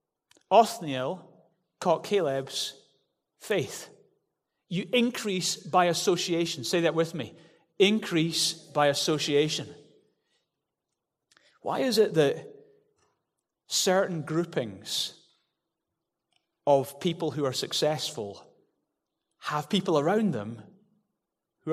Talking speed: 85 wpm